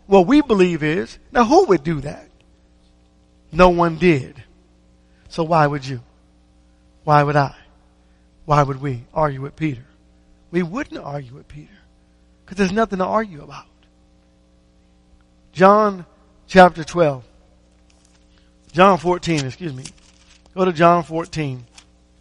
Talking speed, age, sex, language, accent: 125 wpm, 50-69, male, English, American